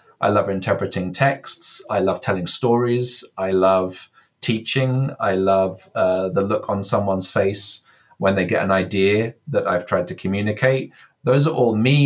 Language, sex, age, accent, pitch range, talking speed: English, male, 30-49, British, 95-125 Hz, 165 wpm